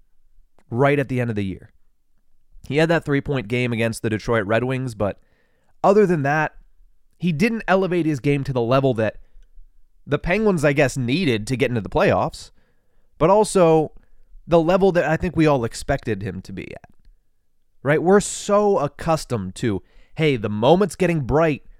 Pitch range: 110-180 Hz